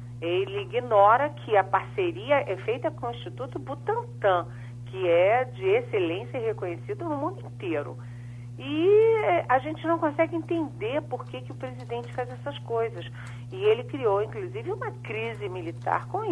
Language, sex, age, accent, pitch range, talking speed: Portuguese, female, 40-59, Brazilian, 120-180 Hz, 155 wpm